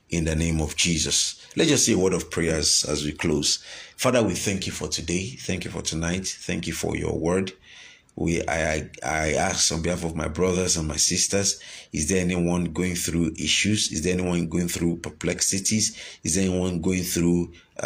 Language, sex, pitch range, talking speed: English, male, 80-95 Hz, 200 wpm